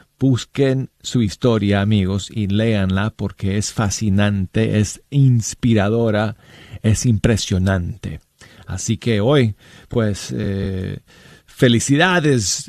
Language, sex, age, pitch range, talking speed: Spanish, male, 40-59, 110-145 Hz, 90 wpm